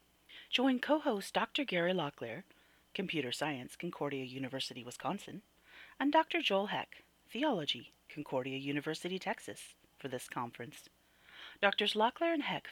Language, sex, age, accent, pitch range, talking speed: English, female, 30-49, American, 135-200 Hz, 120 wpm